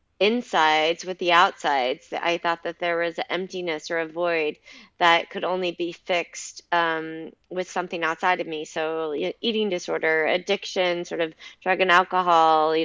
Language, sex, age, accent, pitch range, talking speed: English, female, 20-39, American, 160-185 Hz, 165 wpm